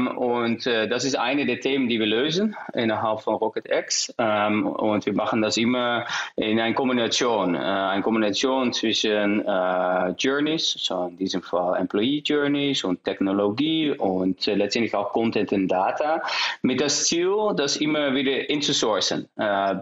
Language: German